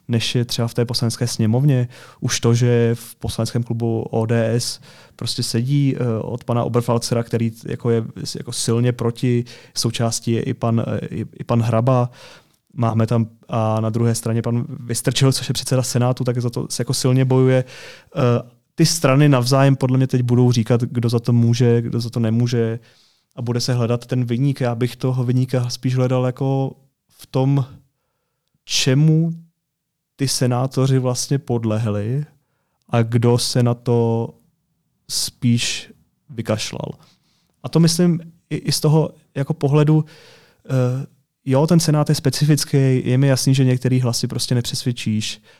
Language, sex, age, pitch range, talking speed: Czech, male, 20-39, 120-135 Hz, 145 wpm